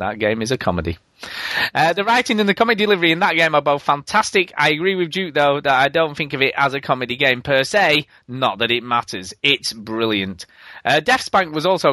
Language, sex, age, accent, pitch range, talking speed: English, male, 20-39, British, 130-180 Hz, 225 wpm